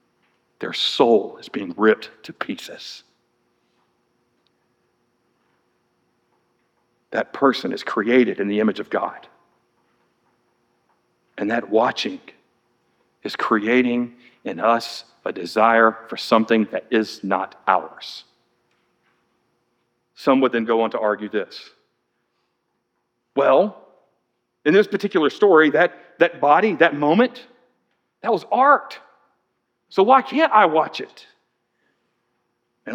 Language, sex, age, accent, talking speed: English, male, 50-69, American, 105 wpm